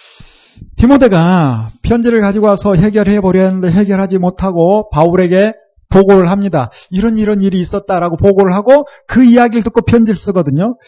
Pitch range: 155-230 Hz